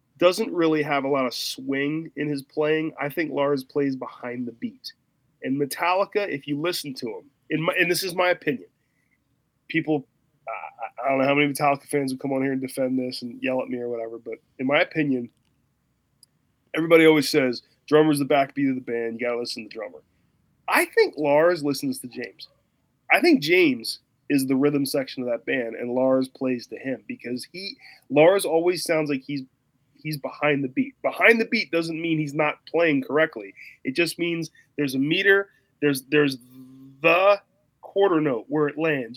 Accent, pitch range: American, 135-175 Hz